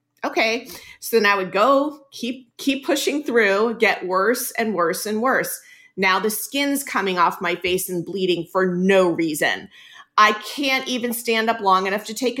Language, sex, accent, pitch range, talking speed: English, female, American, 195-260 Hz, 180 wpm